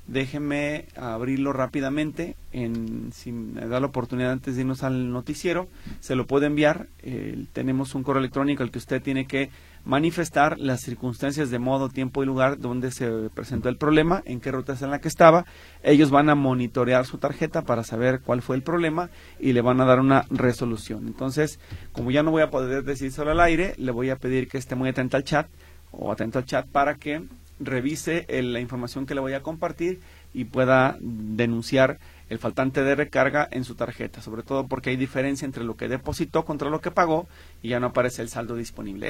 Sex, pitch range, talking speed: male, 125-150 Hz, 205 wpm